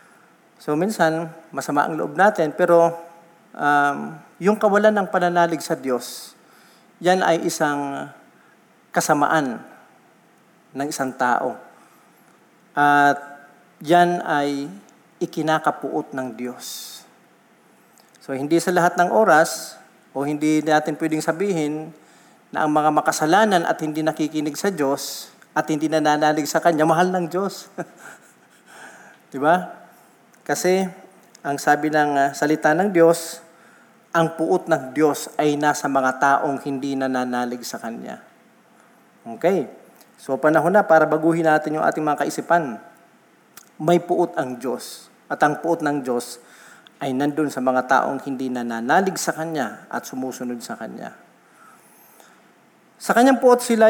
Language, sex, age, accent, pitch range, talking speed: Filipino, male, 40-59, native, 145-175 Hz, 125 wpm